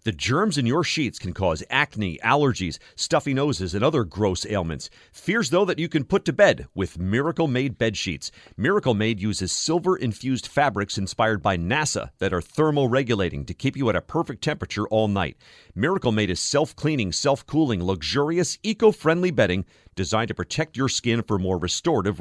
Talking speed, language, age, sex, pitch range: 165 wpm, English, 40-59, male, 100-145 Hz